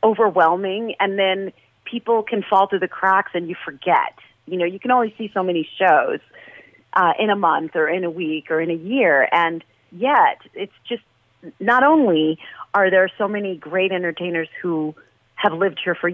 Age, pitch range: 40-59, 170-230 Hz